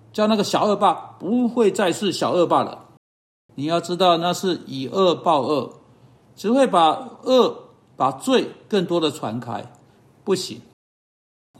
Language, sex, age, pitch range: Chinese, male, 60-79, 150-225 Hz